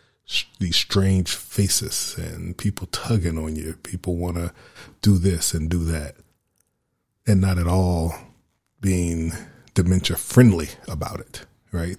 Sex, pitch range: male, 85-100 Hz